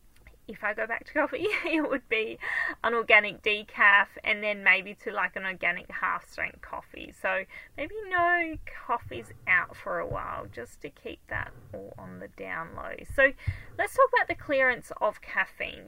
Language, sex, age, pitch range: English, female, 30-49, 215-300 Hz